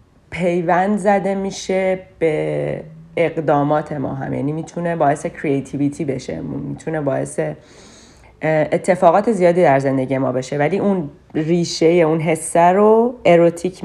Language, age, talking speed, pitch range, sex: Persian, 30-49, 115 wpm, 150-190 Hz, female